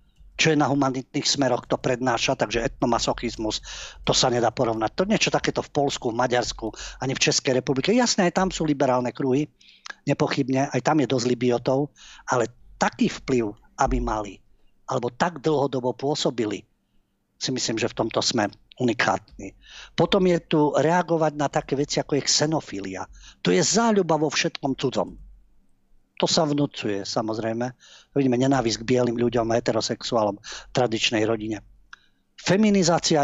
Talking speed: 150 wpm